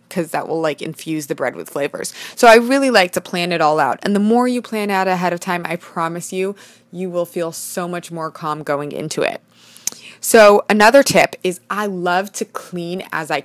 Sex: female